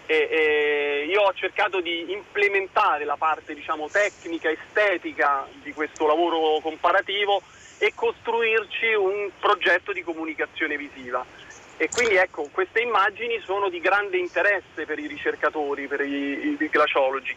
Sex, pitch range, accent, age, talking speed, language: male, 155-200 Hz, native, 40-59, 135 wpm, Italian